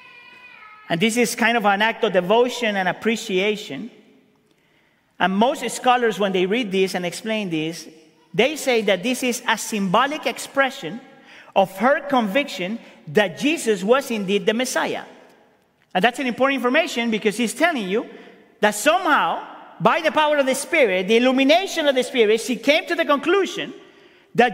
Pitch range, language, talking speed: 220-300 Hz, English, 160 wpm